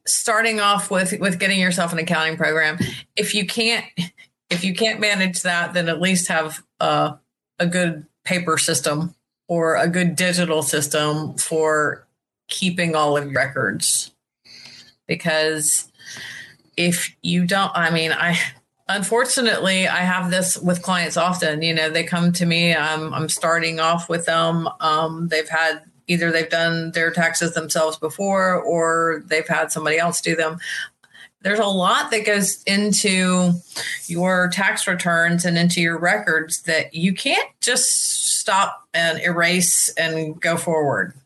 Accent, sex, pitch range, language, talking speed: American, female, 155-180 Hz, English, 150 wpm